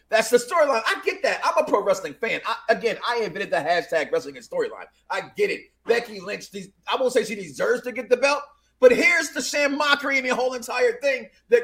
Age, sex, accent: 40-59, male, American